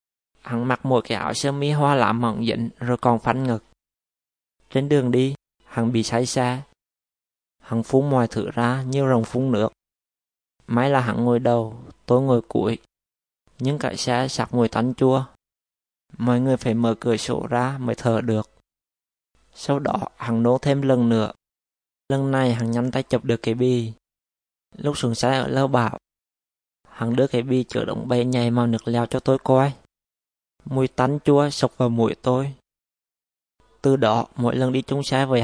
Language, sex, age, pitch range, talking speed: Vietnamese, male, 20-39, 110-130 Hz, 180 wpm